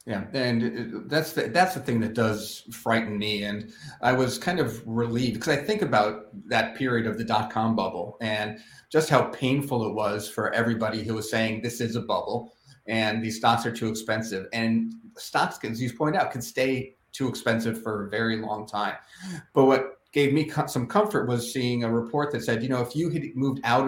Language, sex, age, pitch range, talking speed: English, male, 40-59, 110-130 Hz, 210 wpm